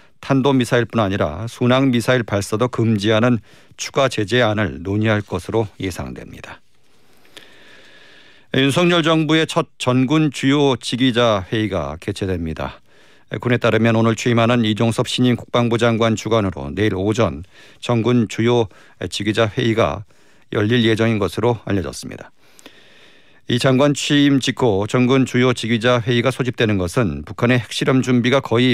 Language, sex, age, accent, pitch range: Korean, male, 40-59, native, 105-130 Hz